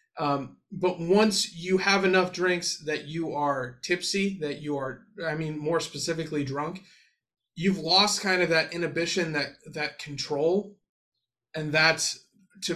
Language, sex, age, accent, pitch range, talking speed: English, male, 30-49, American, 145-175 Hz, 145 wpm